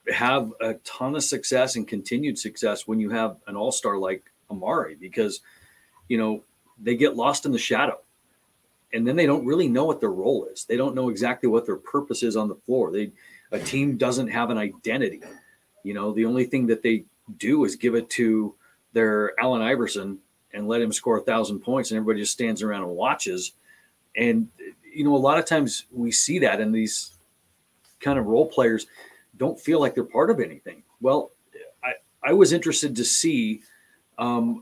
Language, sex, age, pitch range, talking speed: English, male, 40-59, 110-150 Hz, 195 wpm